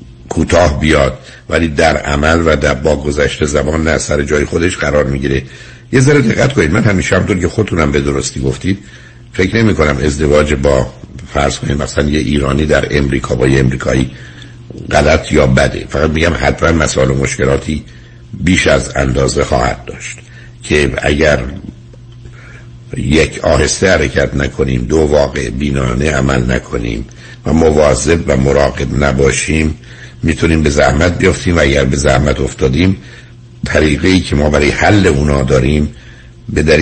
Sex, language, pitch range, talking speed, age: male, Persian, 65-80 Hz, 145 wpm, 60-79